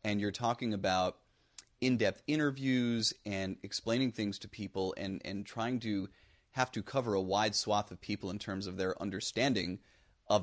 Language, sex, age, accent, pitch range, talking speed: English, male, 30-49, American, 95-110 Hz, 165 wpm